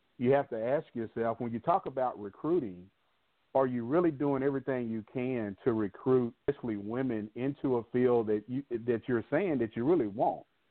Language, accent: English, American